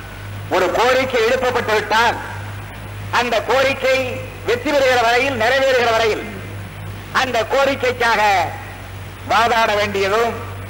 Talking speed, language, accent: 80 wpm, Tamil, native